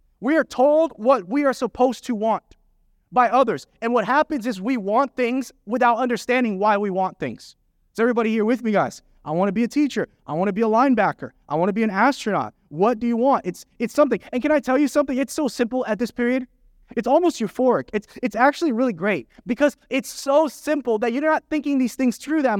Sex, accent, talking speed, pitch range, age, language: male, American, 230 wpm, 195-265 Hz, 20-39, English